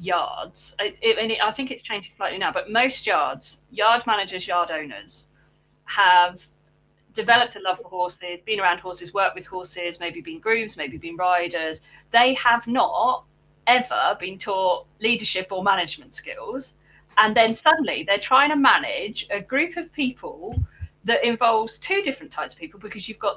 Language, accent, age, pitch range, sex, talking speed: English, British, 40-59, 175-255 Hz, female, 160 wpm